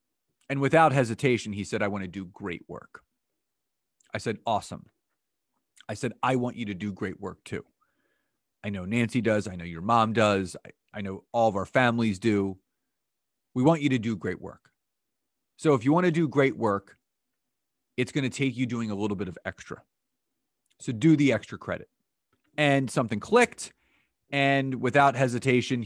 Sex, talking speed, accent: male, 180 wpm, American